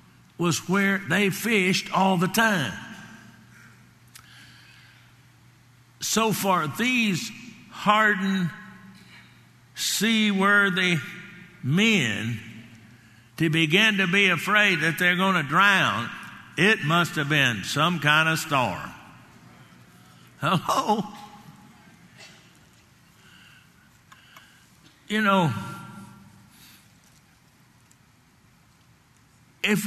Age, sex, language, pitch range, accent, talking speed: 60-79, male, English, 165-205 Hz, American, 70 wpm